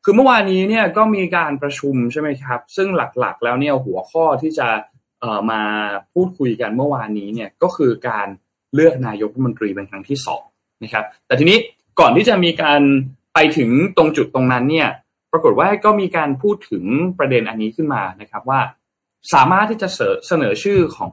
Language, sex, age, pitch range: Thai, male, 20-39, 120-165 Hz